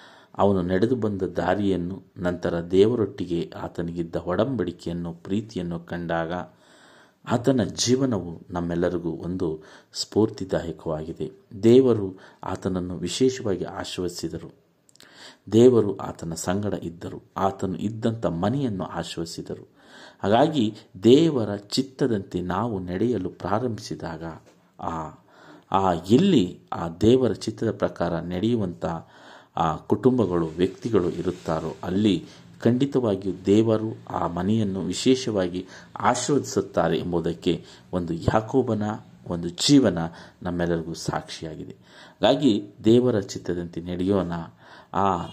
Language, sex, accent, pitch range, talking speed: Kannada, male, native, 85-110 Hz, 85 wpm